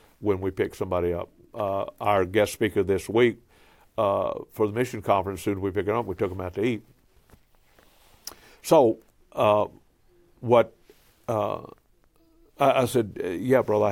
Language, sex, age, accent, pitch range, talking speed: English, male, 60-79, American, 95-115 Hz, 160 wpm